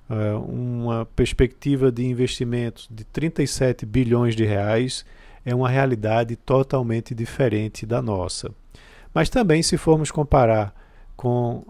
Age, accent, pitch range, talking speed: 50-69, Brazilian, 110-135 Hz, 120 wpm